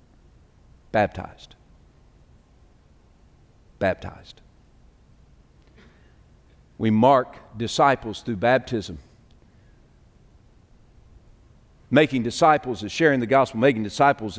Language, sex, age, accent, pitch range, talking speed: English, male, 50-69, American, 110-155 Hz, 65 wpm